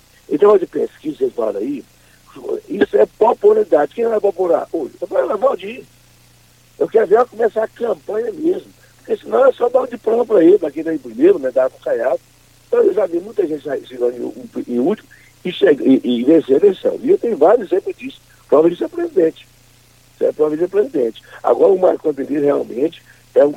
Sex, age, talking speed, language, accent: male, 60-79, 220 wpm, Portuguese, Brazilian